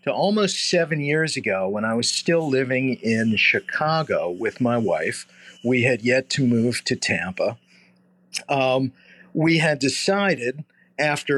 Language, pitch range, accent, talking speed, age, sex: English, 130-185 Hz, American, 140 wpm, 40-59, male